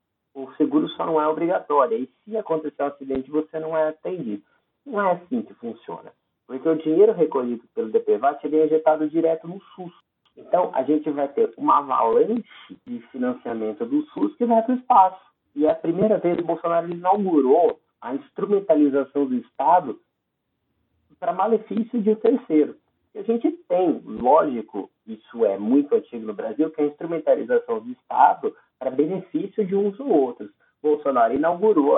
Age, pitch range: 40-59, 150-255 Hz